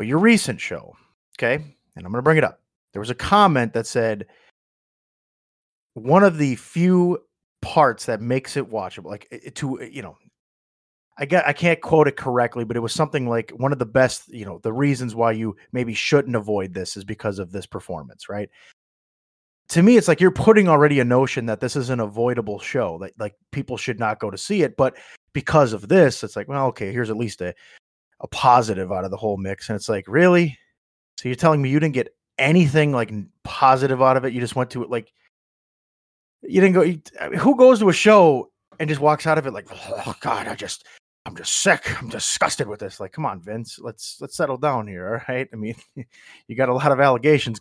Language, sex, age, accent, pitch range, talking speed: English, male, 30-49, American, 110-150 Hz, 220 wpm